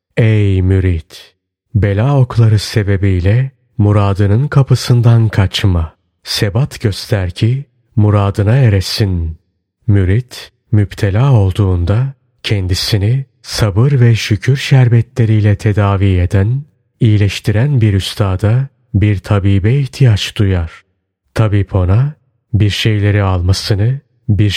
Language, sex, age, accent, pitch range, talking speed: Turkish, male, 40-59, native, 100-125 Hz, 90 wpm